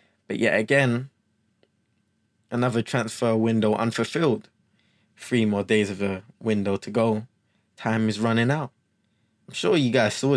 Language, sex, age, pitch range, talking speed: English, male, 20-39, 105-125 Hz, 140 wpm